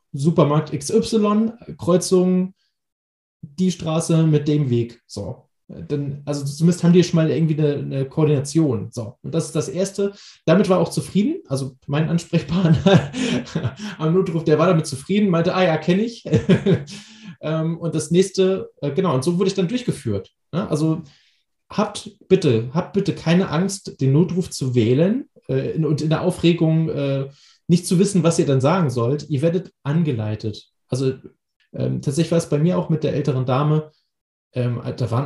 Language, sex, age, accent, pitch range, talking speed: German, male, 20-39, German, 145-185 Hz, 160 wpm